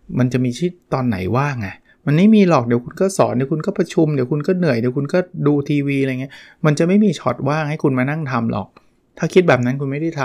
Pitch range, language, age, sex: 110-145 Hz, Thai, 20-39, male